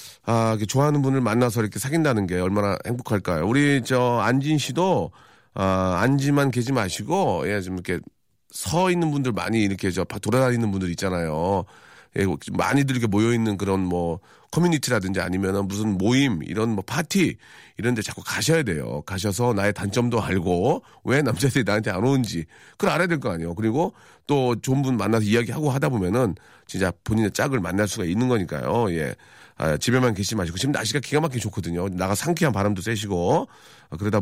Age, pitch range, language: 40-59, 95-135 Hz, Korean